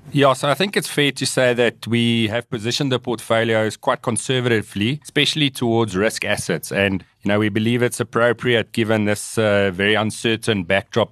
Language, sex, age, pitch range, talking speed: English, male, 40-59, 100-130 Hz, 180 wpm